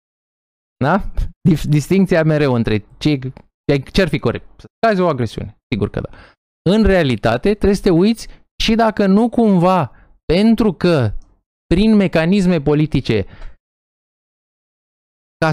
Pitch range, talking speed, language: 130-200 Hz, 120 wpm, Romanian